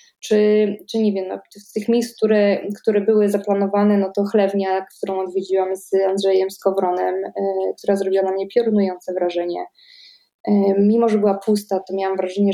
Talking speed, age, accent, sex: 155 wpm, 20-39, native, female